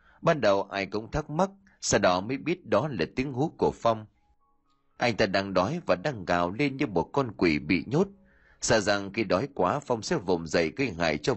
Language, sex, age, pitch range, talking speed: Vietnamese, male, 20-39, 90-145 Hz, 220 wpm